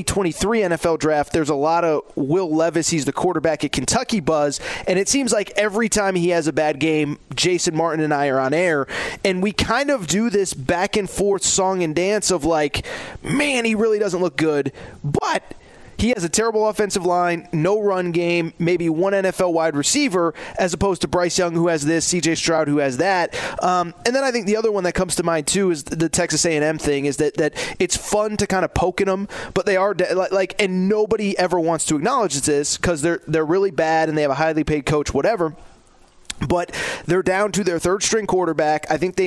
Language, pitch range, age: English, 160-195 Hz, 20-39